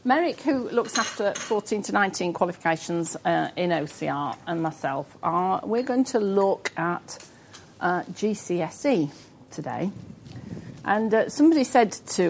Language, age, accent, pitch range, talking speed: English, 50-69, British, 175-260 Hz, 125 wpm